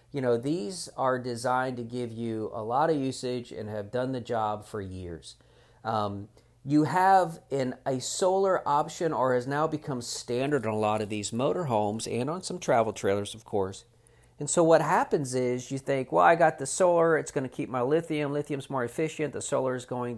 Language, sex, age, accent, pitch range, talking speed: English, male, 40-59, American, 115-150 Hz, 205 wpm